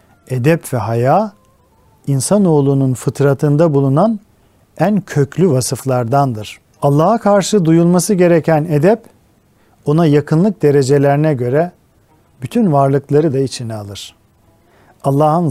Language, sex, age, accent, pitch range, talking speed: Turkish, male, 50-69, native, 125-160 Hz, 95 wpm